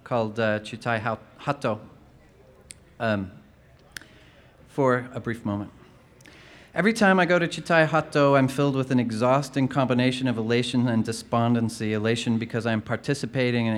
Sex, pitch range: male, 115-135 Hz